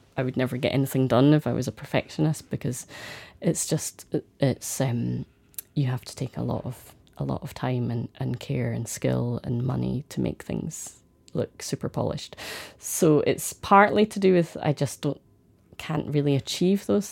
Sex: female